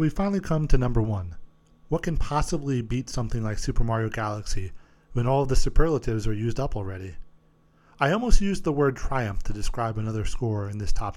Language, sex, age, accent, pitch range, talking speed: English, male, 40-59, American, 110-140 Hz, 195 wpm